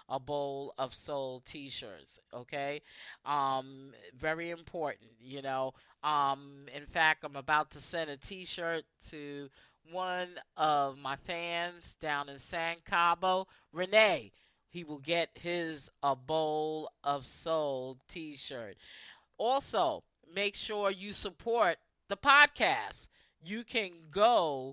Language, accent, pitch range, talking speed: English, American, 150-210 Hz, 120 wpm